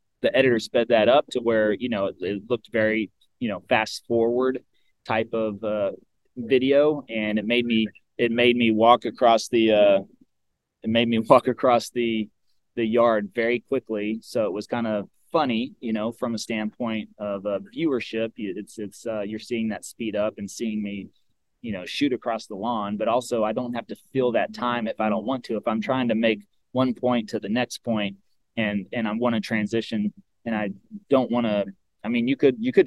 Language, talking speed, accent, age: English, 210 wpm, American, 30-49